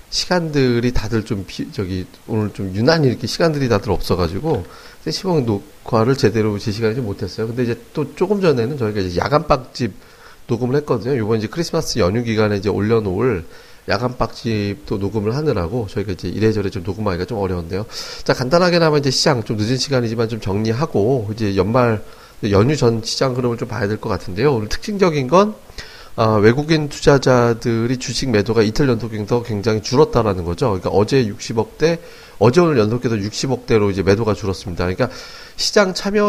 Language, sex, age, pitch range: Korean, male, 30-49, 105-140 Hz